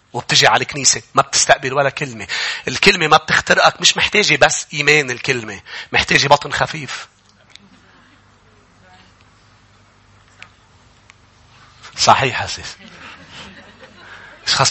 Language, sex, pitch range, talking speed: English, male, 110-155 Hz, 85 wpm